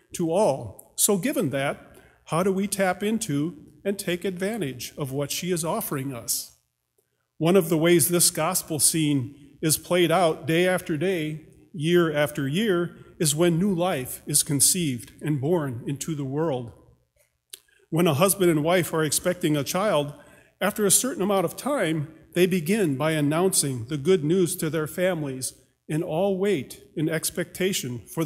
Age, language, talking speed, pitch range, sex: 40-59, English, 165 wpm, 145-180 Hz, male